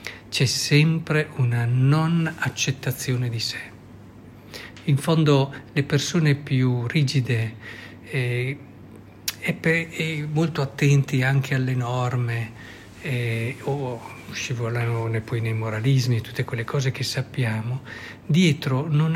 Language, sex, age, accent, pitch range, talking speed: Italian, male, 50-69, native, 120-145 Hz, 100 wpm